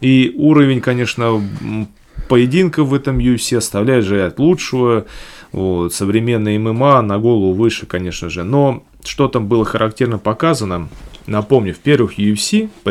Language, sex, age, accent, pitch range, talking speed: Russian, male, 30-49, native, 105-135 Hz, 130 wpm